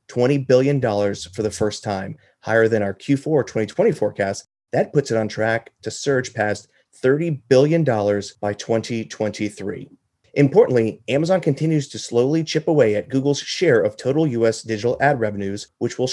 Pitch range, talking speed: 105-140 Hz, 155 wpm